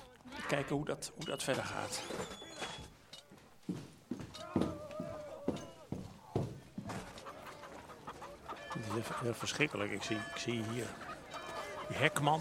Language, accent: Dutch, Dutch